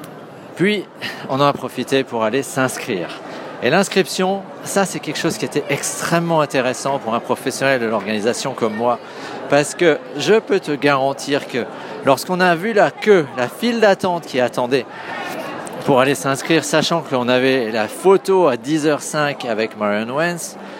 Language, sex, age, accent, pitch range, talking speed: French, male, 40-59, French, 125-170 Hz, 160 wpm